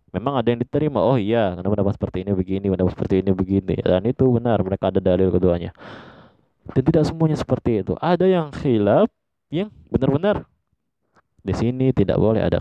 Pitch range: 90-130 Hz